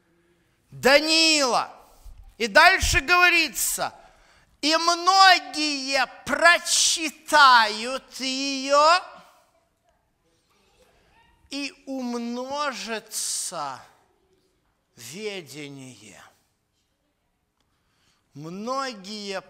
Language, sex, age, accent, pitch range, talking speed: Russian, male, 50-69, native, 200-275 Hz, 35 wpm